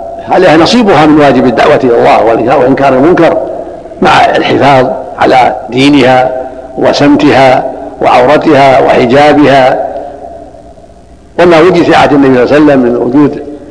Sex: male